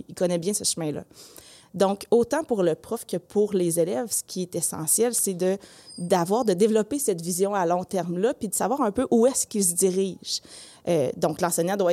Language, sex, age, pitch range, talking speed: French, female, 20-39, 175-210 Hz, 210 wpm